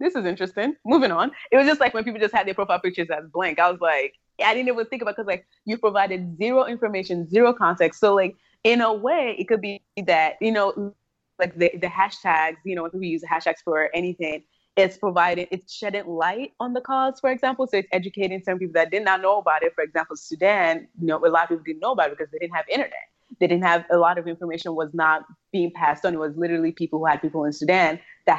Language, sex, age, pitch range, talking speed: English, female, 20-39, 175-245 Hz, 255 wpm